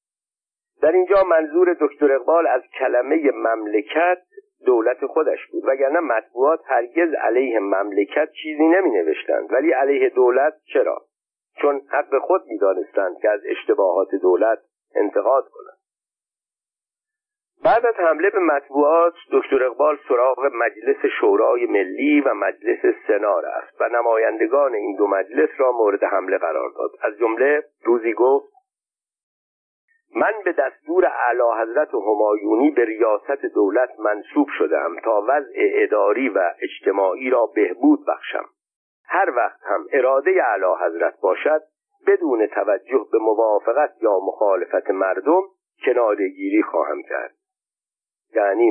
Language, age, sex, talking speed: Persian, 50-69, male, 120 wpm